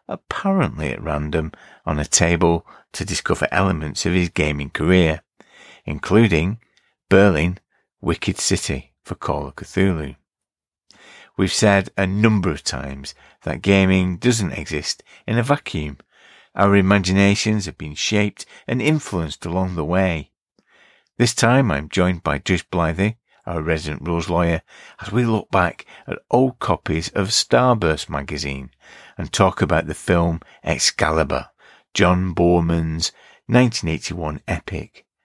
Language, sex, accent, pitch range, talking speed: English, male, British, 80-100 Hz, 130 wpm